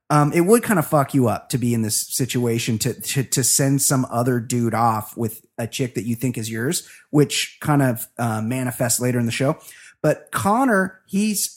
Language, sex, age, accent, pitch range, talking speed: English, male, 30-49, American, 125-170 Hz, 215 wpm